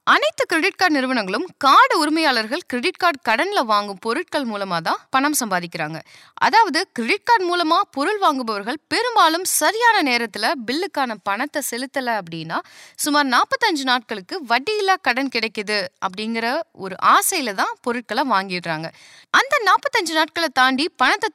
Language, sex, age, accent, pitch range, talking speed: Tamil, female, 20-39, native, 235-365 Hz, 130 wpm